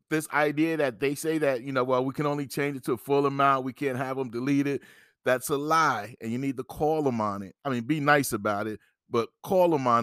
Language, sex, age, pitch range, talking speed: English, male, 30-49, 120-145 Hz, 270 wpm